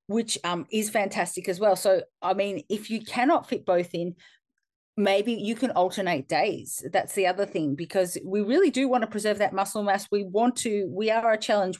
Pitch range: 185-220 Hz